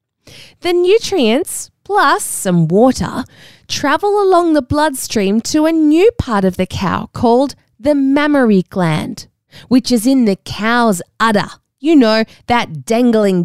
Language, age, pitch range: English, 20-39, 190-295 Hz